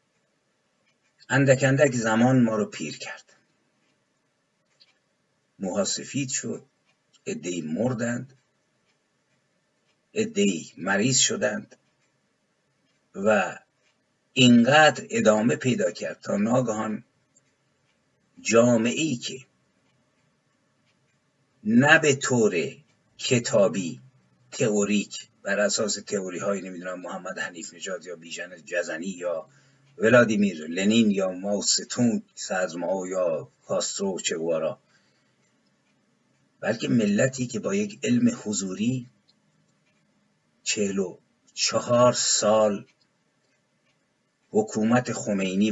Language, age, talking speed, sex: Persian, 50-69, 80 wpm, male